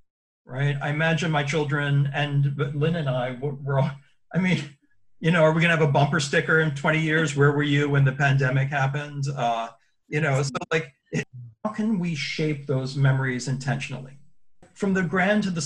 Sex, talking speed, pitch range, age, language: male, 195 wpm, 140-165 Hz, 40-59, English